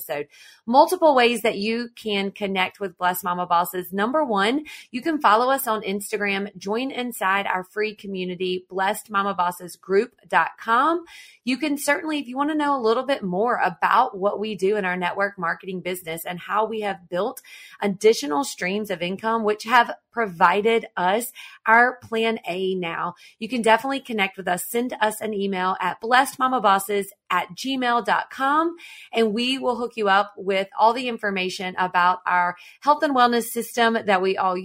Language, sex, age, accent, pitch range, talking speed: English, female, 30-49, American, 190-240 Hz, 165 wpm